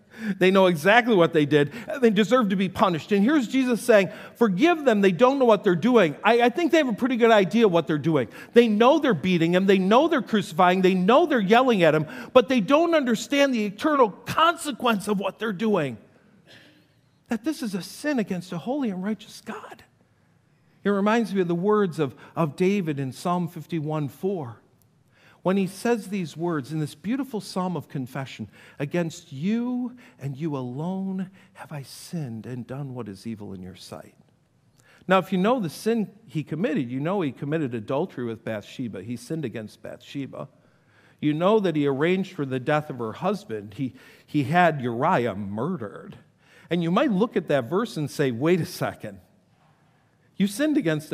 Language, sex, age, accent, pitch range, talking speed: English, male, 50-69, American, 145-220 Hz, 190 wpm